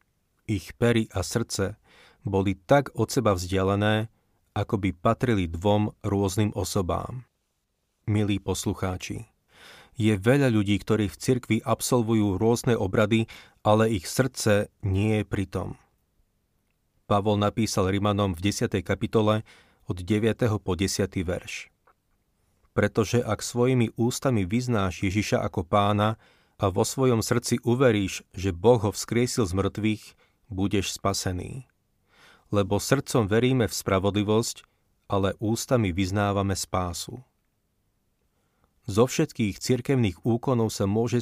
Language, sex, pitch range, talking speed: Slovak, male, 100-115 Hz, 115 wpm